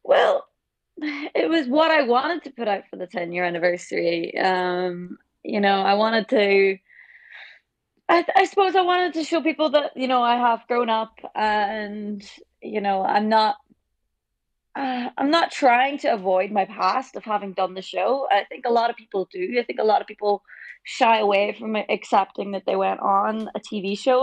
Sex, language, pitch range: female, English, 195-260 Hz